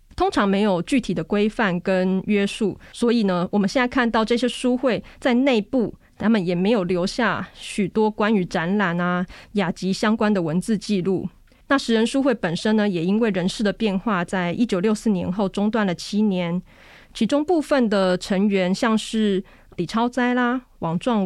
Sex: female